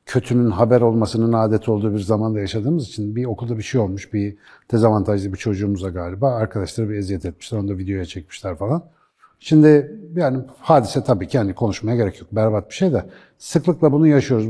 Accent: native